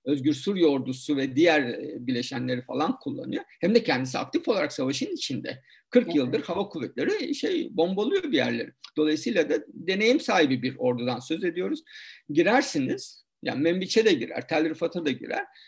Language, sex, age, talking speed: Turkish, male, 50-69, 155 wpm